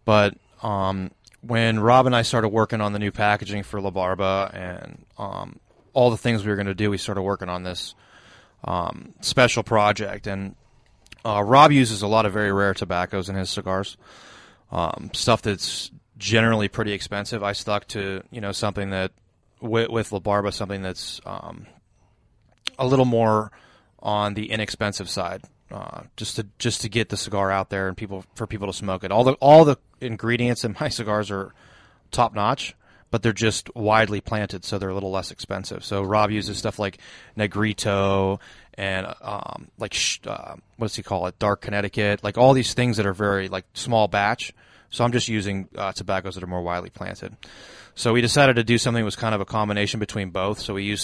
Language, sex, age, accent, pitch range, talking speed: English, male, 20-39, American, 95-110 Hz, 195 wpm